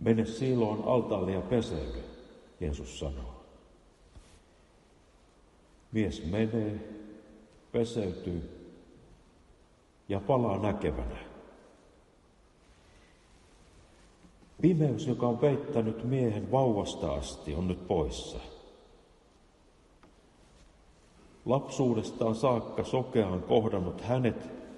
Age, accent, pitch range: 60-79, native, 80-115 Hz